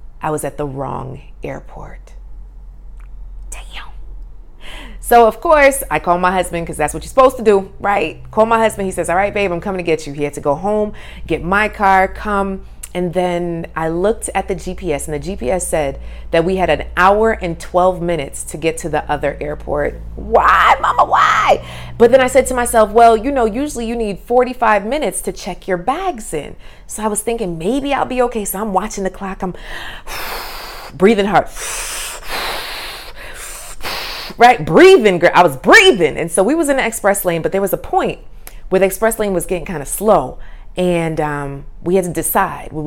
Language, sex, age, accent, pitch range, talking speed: English, female, 30-49, American, 165-215 Hz, 195 wpm